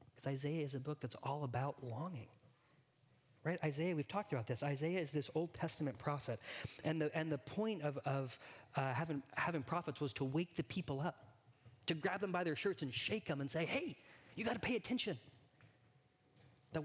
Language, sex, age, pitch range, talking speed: English, male, 30-49, 130-165 Hz, 195 wpm